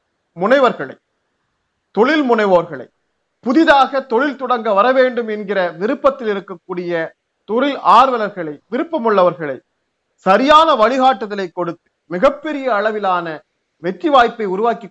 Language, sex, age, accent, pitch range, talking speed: Tamil, male, 40-59, native, 190-275 Hz, 85 wpm